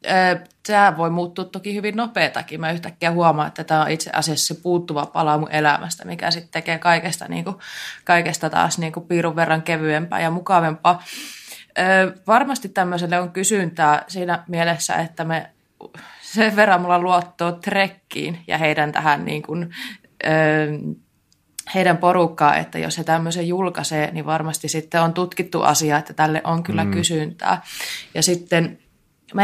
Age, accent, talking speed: 20-39, native, 150 wpm